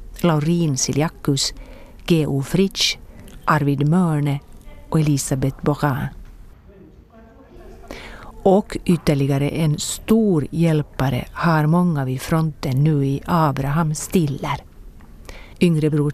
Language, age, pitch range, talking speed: Swedish, 40-59, 135-165 Hz, 90 wpm